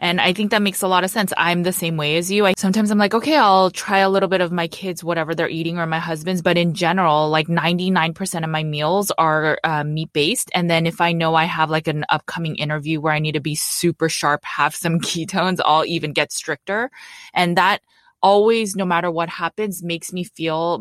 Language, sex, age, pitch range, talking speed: English, female, 20-39, 160-190 Hz, 230 wpm